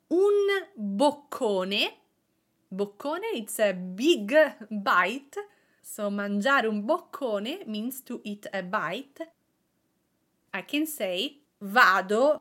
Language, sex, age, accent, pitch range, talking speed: English, female, 30-49, Italian, 200-295 Hz, 95 wpm